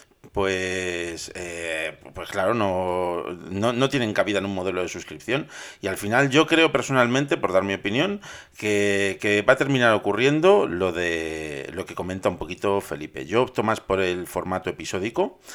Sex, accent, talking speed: male, Spanish, 175 wpm